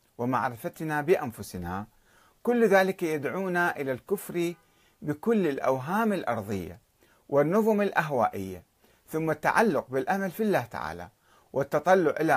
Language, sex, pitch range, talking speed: Arabic, male, 115-175 Hz, 95 wpm